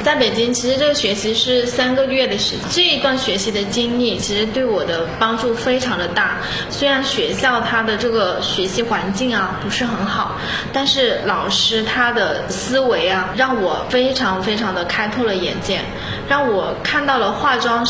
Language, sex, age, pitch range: Chinese, female, 20-39, 200-255 Hz